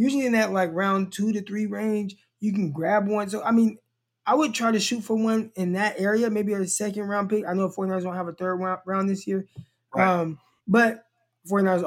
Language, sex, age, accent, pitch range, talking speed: English, male, 20-39, American, 160-210 Hz, 220 wpm